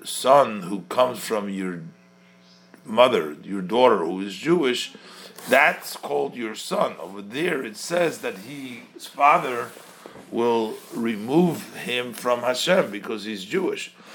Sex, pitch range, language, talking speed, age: male, 100-125 Hz, English, 130 wpm, 50-69